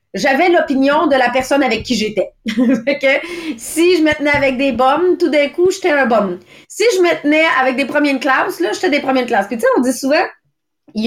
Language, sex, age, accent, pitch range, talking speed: English, female, 30-49, Canadian, 230-295 Hz, 230 wpm